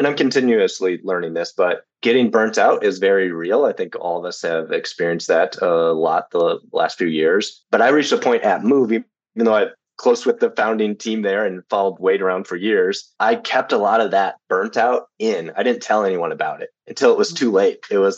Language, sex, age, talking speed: English, male, 30-49, 230 wpm